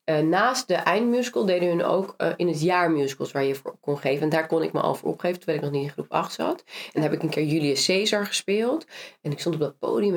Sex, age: female, 30-49